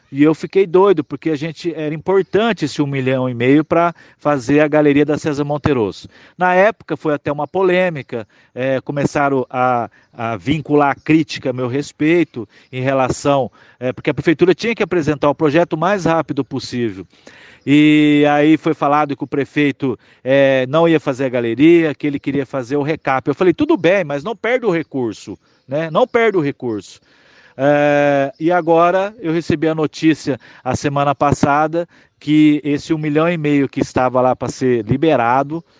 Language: Portuguese